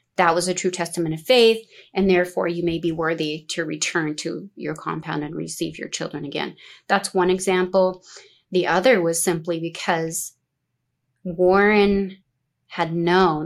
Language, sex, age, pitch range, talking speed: English, female, 30-49, 160-185 Hz, 150 wpm